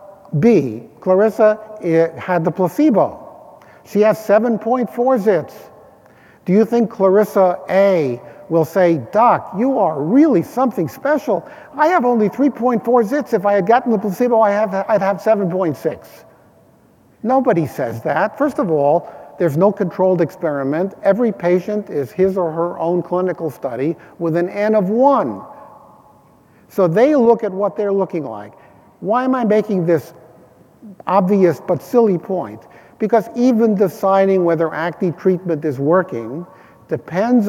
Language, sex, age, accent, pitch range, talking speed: English, male, 50-69, American, 170-220 Hz, 140 wpm